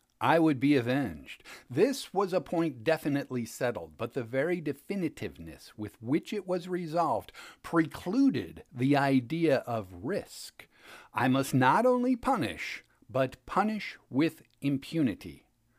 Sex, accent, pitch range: male, American, 125-185 Hz